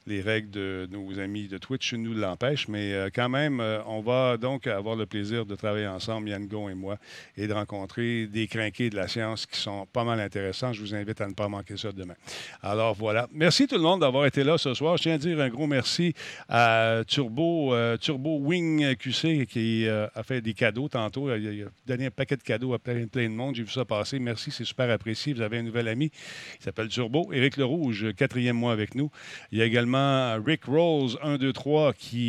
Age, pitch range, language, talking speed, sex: 50-69, 110-140 Hz, French, 230 wpm, male